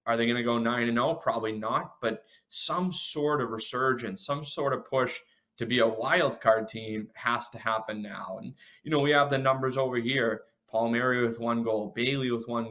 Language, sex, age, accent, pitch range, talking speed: English, male, 20-39, American, 115-145 Hz, 215 wpm